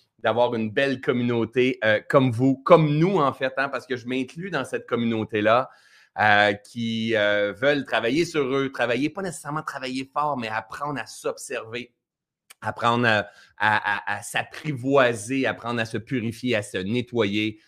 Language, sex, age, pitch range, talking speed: French, male, 30-49, 115-145 Hz, 165 wpm